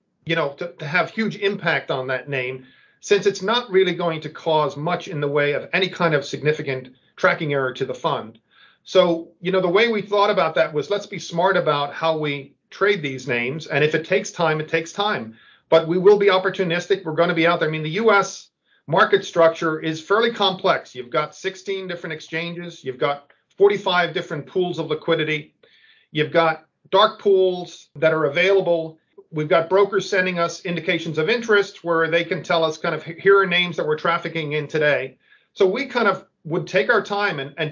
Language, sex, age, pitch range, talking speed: English, male, 40-59, 155-185 Hz, 205 wpm